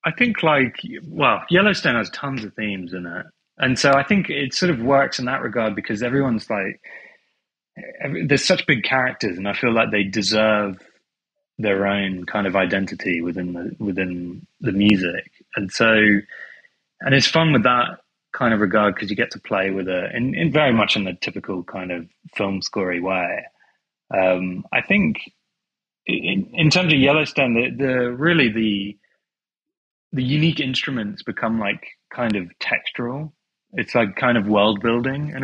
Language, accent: English, British